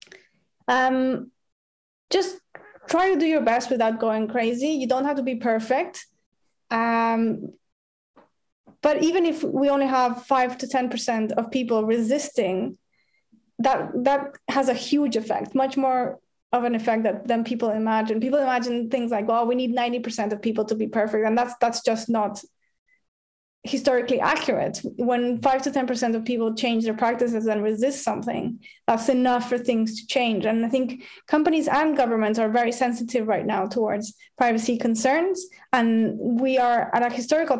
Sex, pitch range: female, 225-270 Hz